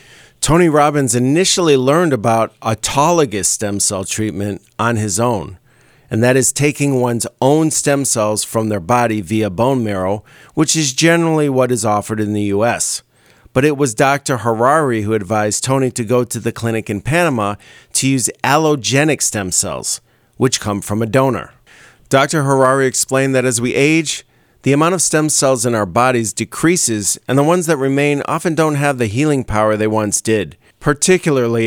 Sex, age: male, 40-59